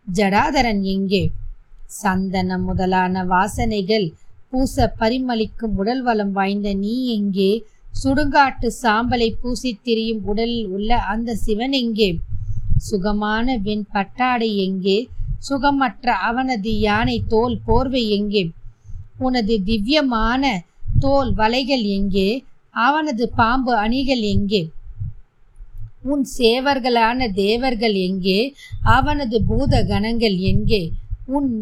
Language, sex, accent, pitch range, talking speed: Tamil, female, native, 195-250 Hz, 90 wpm